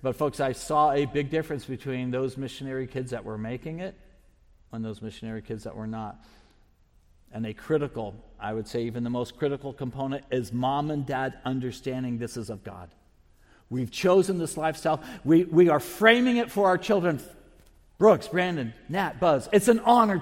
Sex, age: male, 50-69